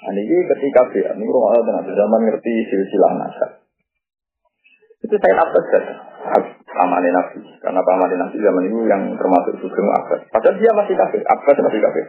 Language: Indonesian